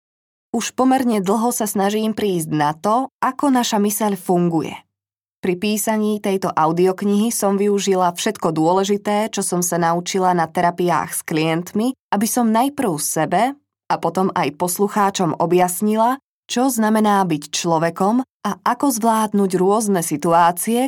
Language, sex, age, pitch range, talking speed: Slovak, female, 20-39, 180-225 Hz, 130 wpm